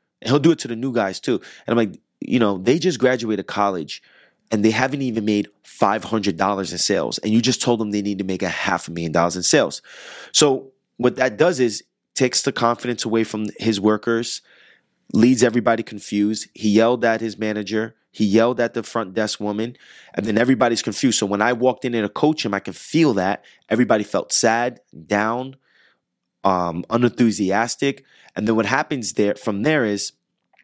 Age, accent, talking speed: 30-49, American, 190 wpm